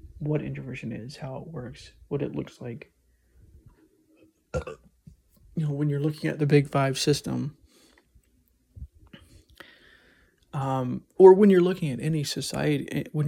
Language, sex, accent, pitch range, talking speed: English, male, American, 120-150 Hz, 130 wpm